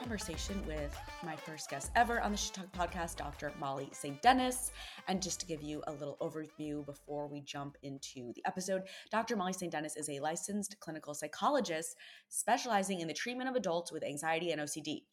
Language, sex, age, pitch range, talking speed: English, female, 20-39, 145-190 Hz, 185 wpm